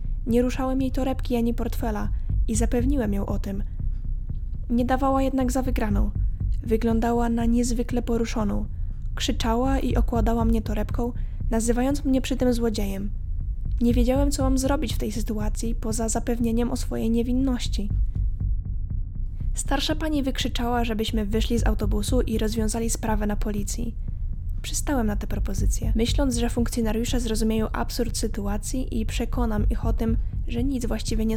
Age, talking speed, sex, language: 10-29, 140 wpm, female, Polish